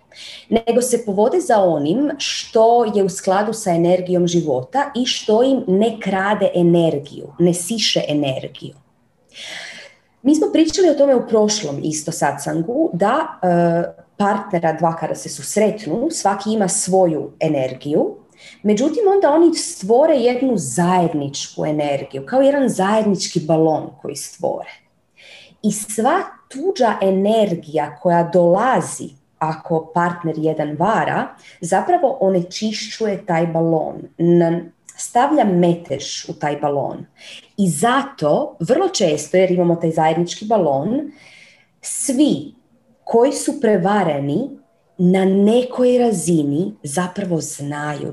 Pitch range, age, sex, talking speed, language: 165-230 Hz, 30-49, female, 110 wpm, Croatian